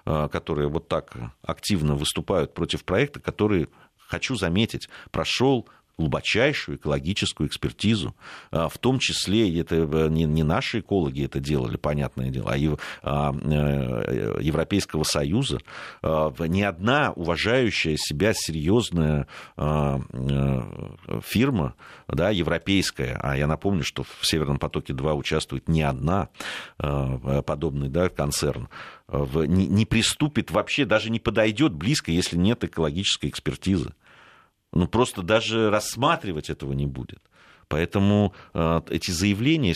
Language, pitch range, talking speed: Russian, 75-110 Hz, 105 wpm